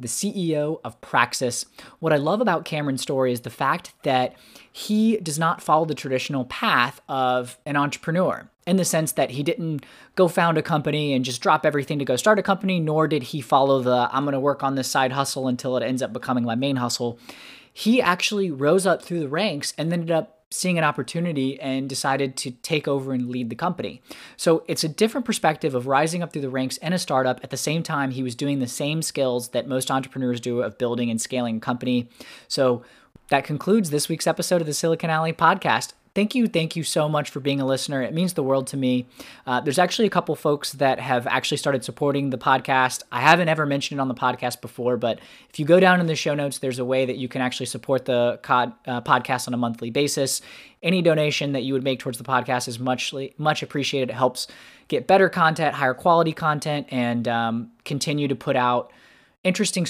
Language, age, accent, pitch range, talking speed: English, 20-39, American, 130-165 Hz, 220 wpm